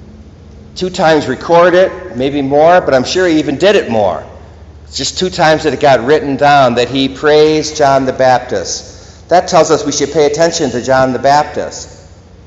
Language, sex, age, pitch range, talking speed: English, male, 50-69, 100-135 Hz, 190 wpm